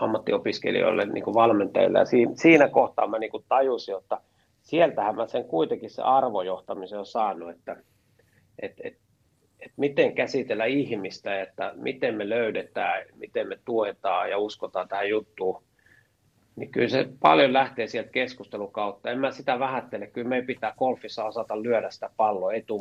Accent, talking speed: native, 150 wpm